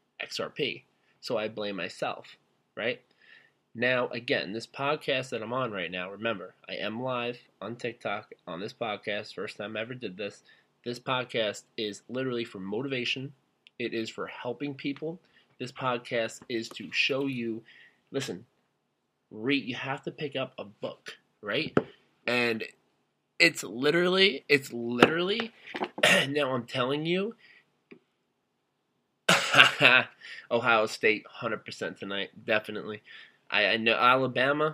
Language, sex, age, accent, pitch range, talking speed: English, male, 20-39, American, 115-140 Hz, 130 wpm